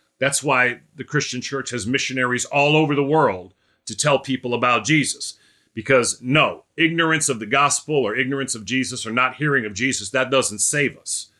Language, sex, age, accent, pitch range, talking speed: English, male, 40-59, American, 110-140 Hz, 185 wpm